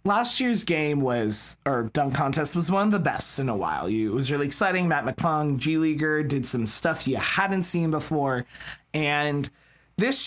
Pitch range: 140-195 Hz